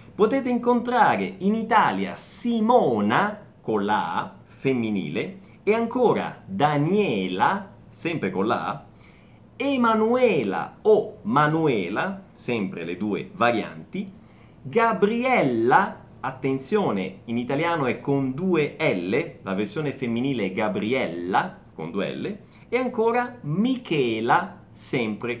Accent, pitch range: native, 150-245 Hz